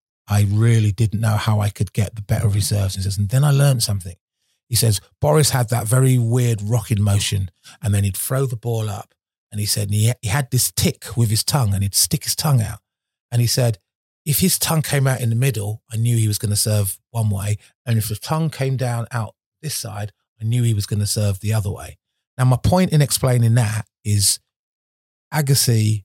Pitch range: 100-120 Hz